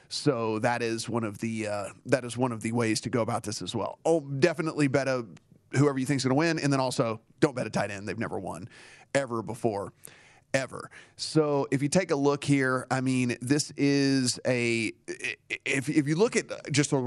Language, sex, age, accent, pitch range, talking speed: English, male, 30-49, American, 120-150 Hz, 220 wpm